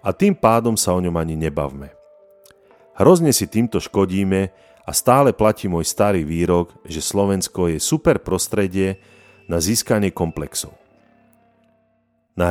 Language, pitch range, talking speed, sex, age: Slovak, 85-110 Hz, 130 wpm, male, 40-59